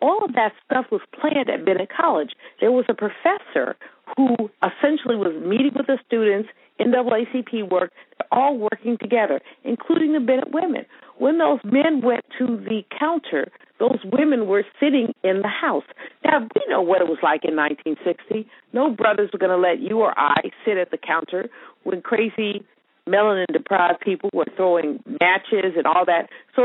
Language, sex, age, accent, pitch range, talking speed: English, female, 50-69, American, 195-275 Hz, 170 wpm